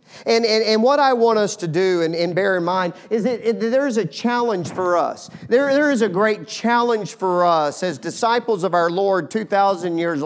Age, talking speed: 40-59, 215 wpm